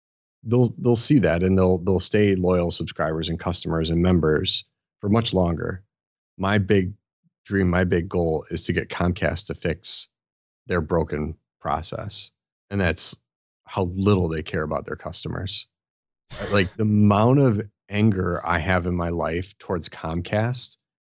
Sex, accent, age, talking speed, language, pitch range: male, American, 30-49, 150 wpm, English, 95-125 Hz